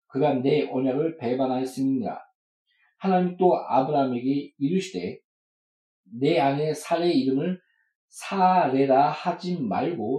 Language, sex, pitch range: Korean, male, 135-180 Hz